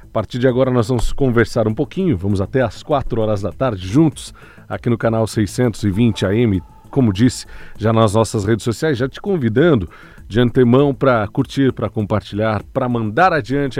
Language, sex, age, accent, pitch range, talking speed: Portuguese, male, 40-59, Brazilian, 110-140 Hz, 180 wpm